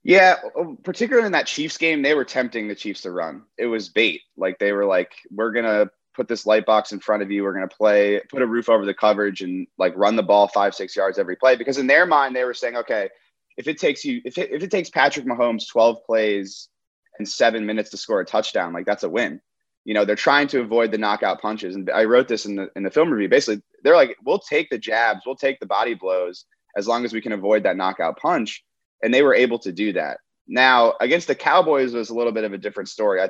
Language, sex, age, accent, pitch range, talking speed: English, male, 20-39, American, 105-165 Hz, 260 wpm